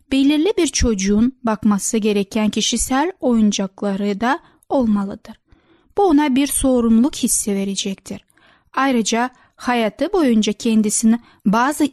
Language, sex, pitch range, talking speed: Turkish, female, 215-270 Hz, 100 wpm